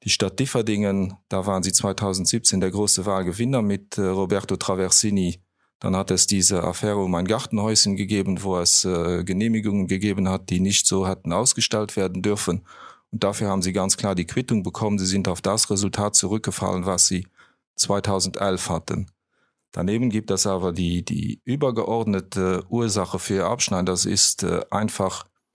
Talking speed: 155 wpm